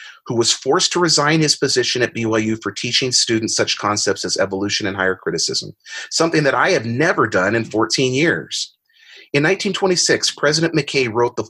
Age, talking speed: 30-49, 175 wpm